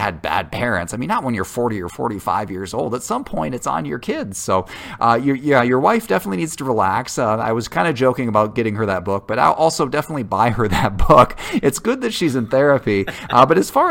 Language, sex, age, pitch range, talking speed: English, male, 30-49, 100-135 Hz, 250 wpm